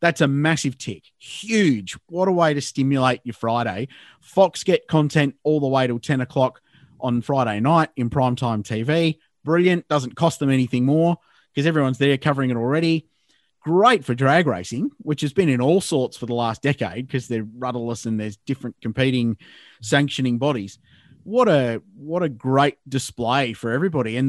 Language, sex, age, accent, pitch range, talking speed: English, male, 30-49, Australian, 125-170 Hz, 175 wpm